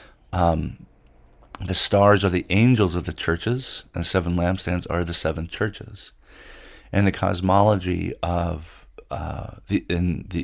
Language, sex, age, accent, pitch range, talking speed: English, male, 50-69, American, 85-100 Hz, 140 wpm